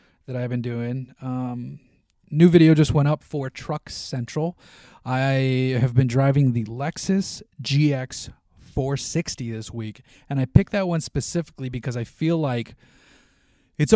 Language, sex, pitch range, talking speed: English, male, 120-155 Hz, 140 wpm